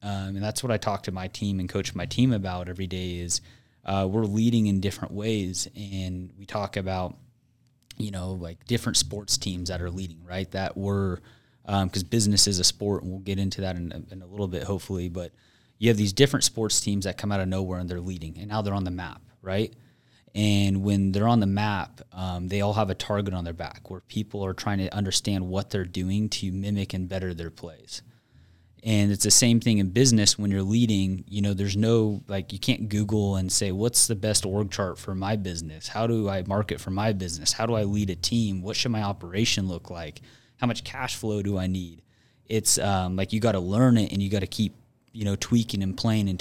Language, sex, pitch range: English, male, 95-110 Hz